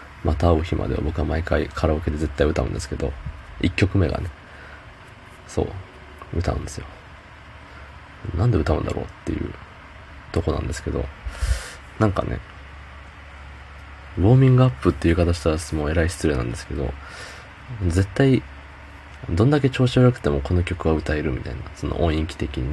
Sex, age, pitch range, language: male, 20-39, 70-90 Hz, Japanese